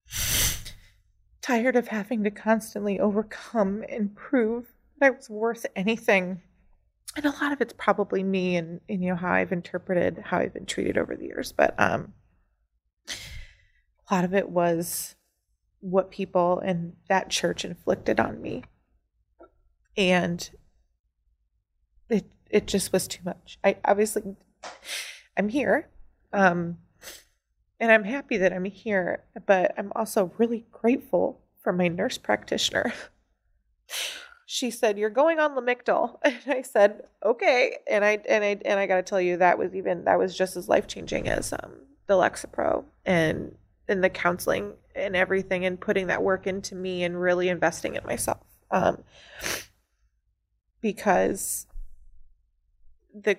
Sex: female